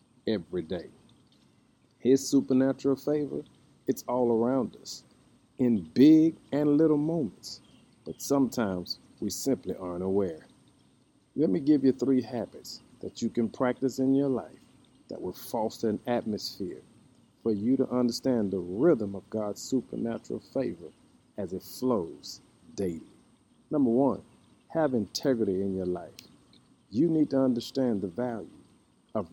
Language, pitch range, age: English, 110-135 Hz, 50-69